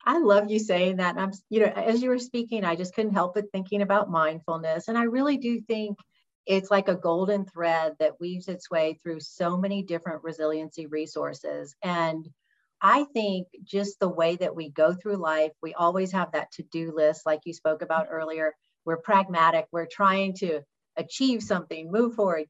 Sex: female